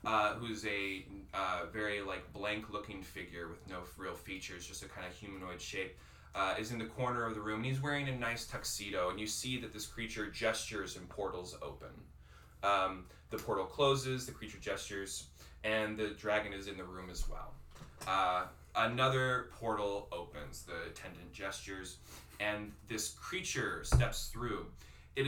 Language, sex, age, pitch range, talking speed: English, male, 10-29, 70-115 Hz, 170 wpm